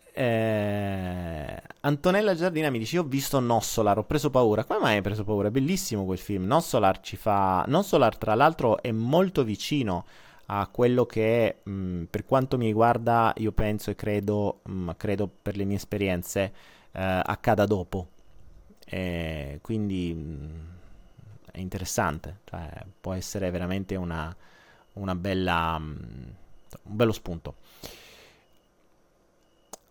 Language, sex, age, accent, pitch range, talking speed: Italian, male, 30-49, native, 95-130 Hz, 130 wpm